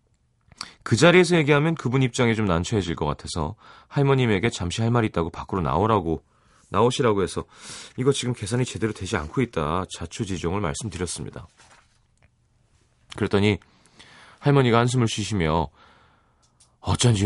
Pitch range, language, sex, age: 90-120 Hz, Korean, male, 30-49